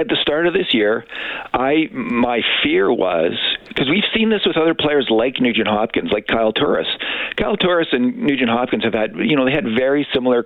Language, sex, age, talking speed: English, male, 50-69, 205 wpm